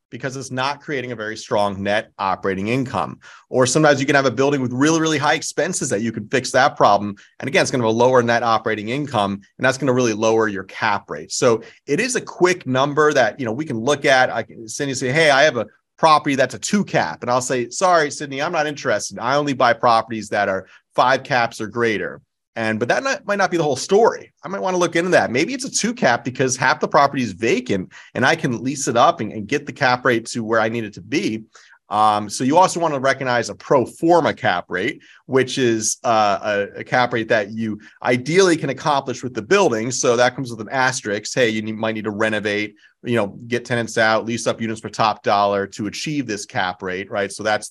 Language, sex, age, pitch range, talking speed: English, male, 30-49, 110-140 Hz, 245 wpm